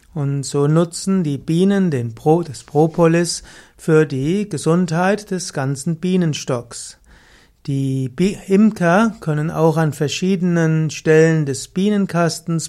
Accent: German